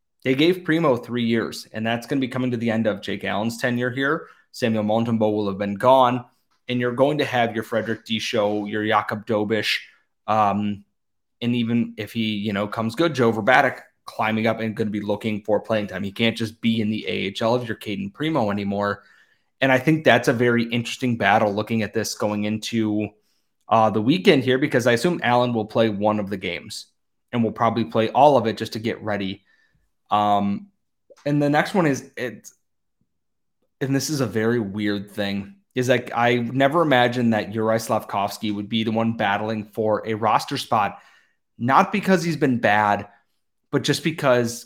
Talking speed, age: 195 wpm, 20-39